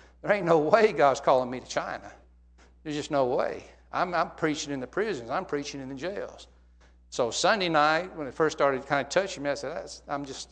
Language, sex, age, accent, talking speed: English, male, 60-79, American, 220 wpm